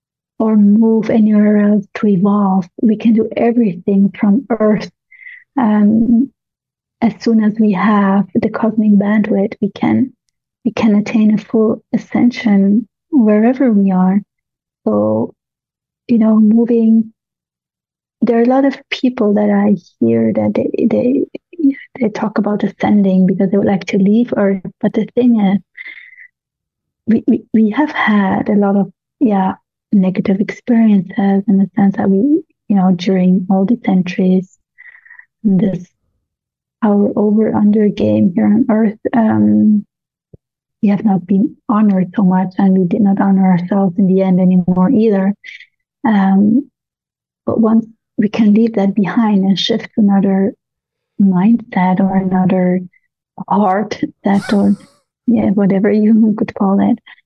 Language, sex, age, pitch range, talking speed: English, female, 30-49, 195-230 Hz, 145 wpm